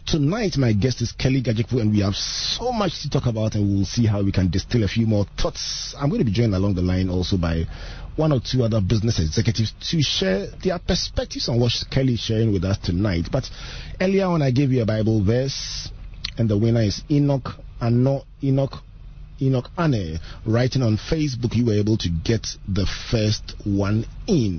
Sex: male